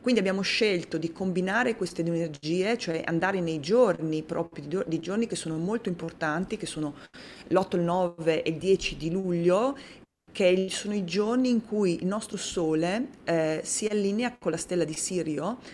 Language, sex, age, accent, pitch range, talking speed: Italian, female, 30-49, native, 160-195 Hz, 175 wpm